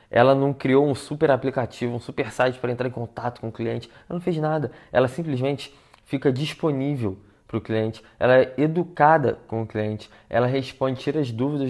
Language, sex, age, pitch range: Portuguese, male, 20-39, 115-135 Hz